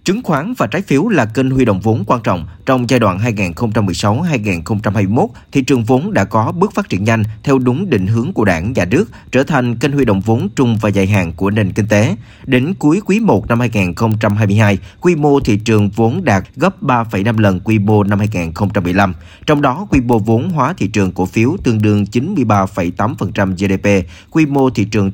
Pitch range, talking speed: 100-130 Hz, 200 wpm